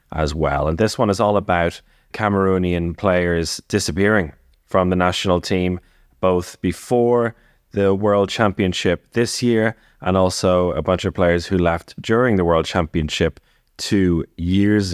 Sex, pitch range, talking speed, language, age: male, 85-105 Hz, 145 wpm, English, 30-49